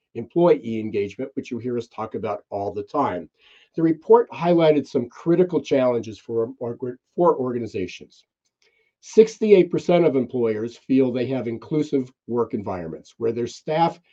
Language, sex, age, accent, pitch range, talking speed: English, male, 50-69, American, 125-170 Hz, 140 wpm